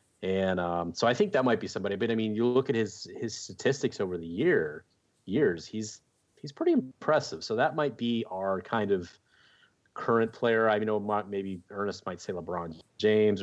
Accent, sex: American, male